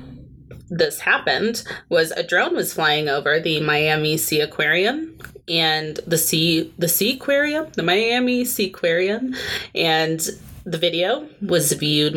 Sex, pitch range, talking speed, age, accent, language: female, 155-205 Hz, 135 wpm, 20-39, American, English